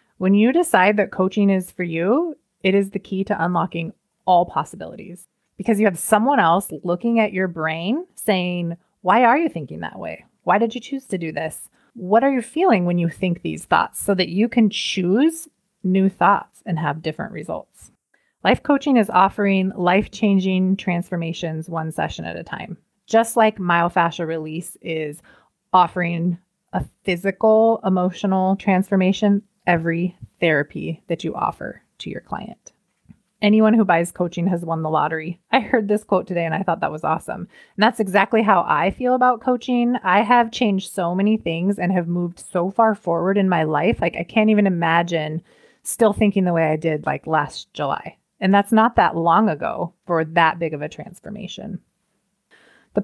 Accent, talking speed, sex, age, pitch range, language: American, 180 wpm, female, 30-49, 170-215 Hz, English